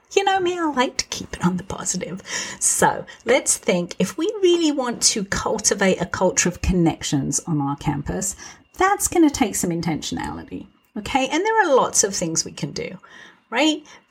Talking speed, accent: 185 wpm, British